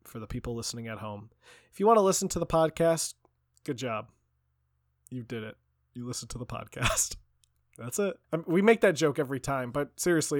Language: English